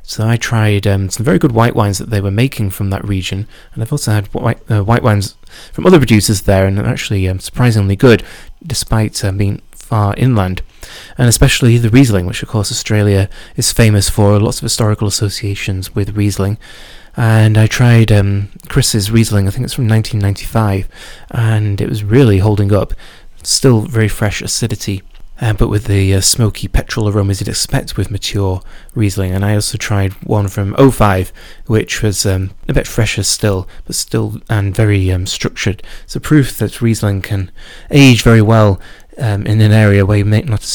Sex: male